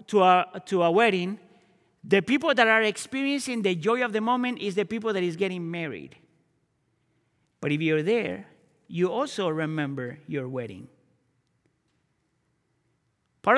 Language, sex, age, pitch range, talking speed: English, male, 40-59, 155-205 Hz, 140 wpm